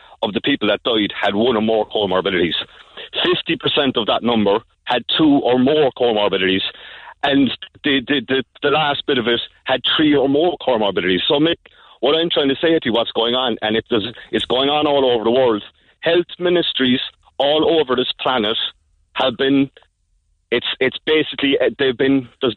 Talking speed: 185 wpm